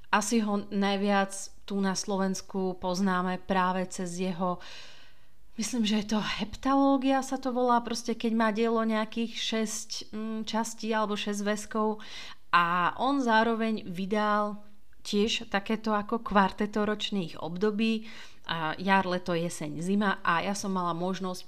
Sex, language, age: female, Slovak, 30-49